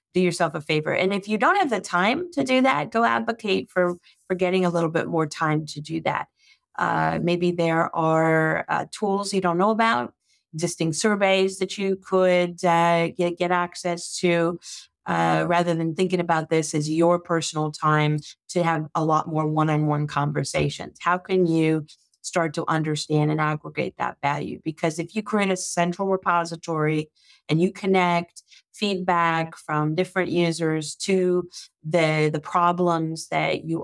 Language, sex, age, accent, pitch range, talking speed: English, female, 40-59, American, 155-175 Hz, 165 wpm